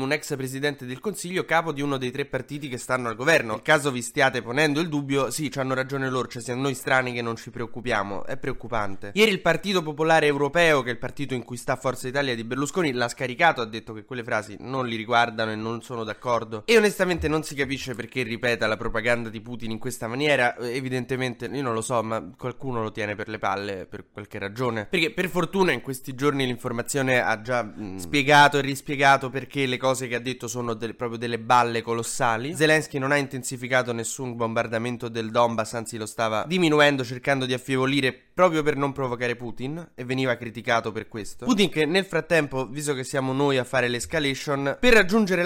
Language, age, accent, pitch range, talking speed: Italian, 20-39, native, 120-145 Hz, 210 wpm